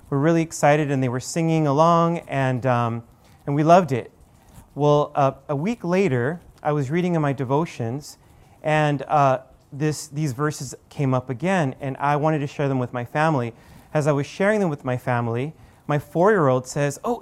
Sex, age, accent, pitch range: male, 30-49, American, 135-165 Hz